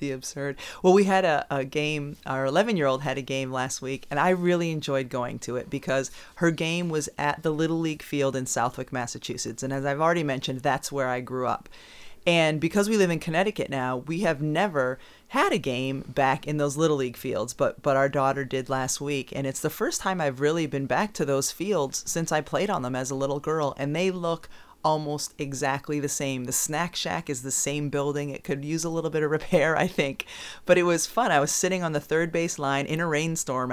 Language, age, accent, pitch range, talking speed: English, 30-49, American, 135-160 Hz, 235 wpm